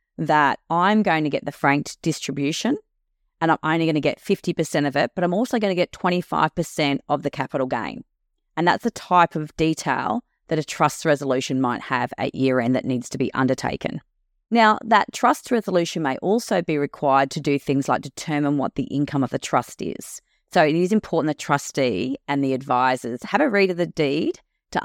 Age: 30-49